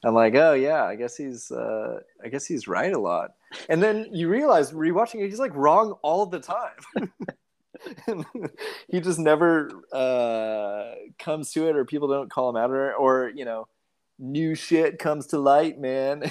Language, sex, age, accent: English, male, 30-49, American